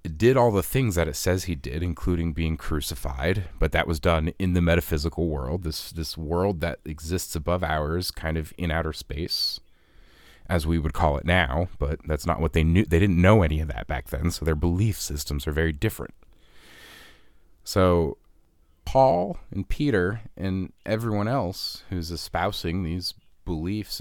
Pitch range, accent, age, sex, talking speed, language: 80-90 Hz, American, 30-49, male, 175 wpm, English